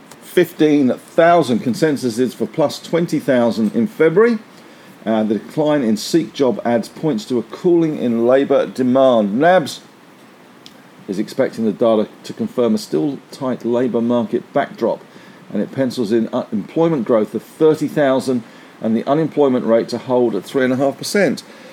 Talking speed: 160 wpm